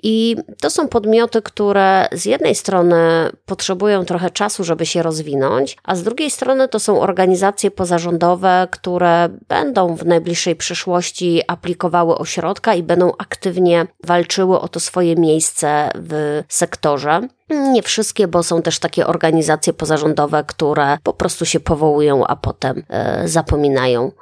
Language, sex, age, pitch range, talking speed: Polish, female, 20-39, 165-190 Hz, 135 wpm